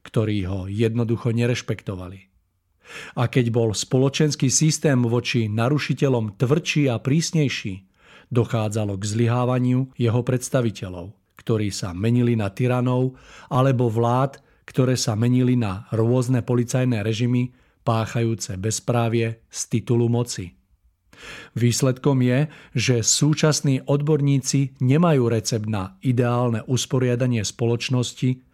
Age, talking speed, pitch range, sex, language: 40-59, 105 wpm, 115-135 Hz, male, Czech